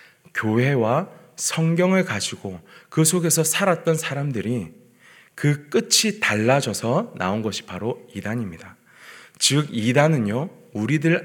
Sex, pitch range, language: male, 105-165 Hz, Korean